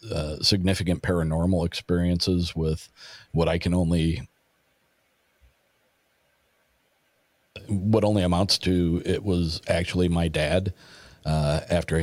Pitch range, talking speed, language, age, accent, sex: 85-95 Hz, 100 wpm, English, 50-69, American, male